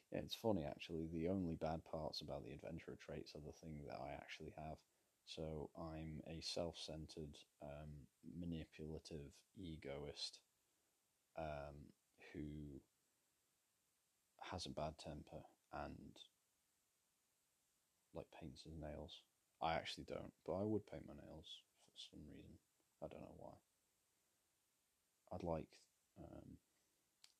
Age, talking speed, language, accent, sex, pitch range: 30-49, 120 wpm, English, British, male, 70-80 Hz